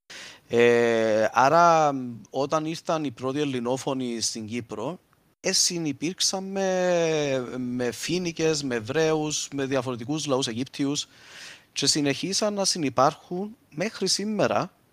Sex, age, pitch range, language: male, 30-49, 125-185 Hz, Greek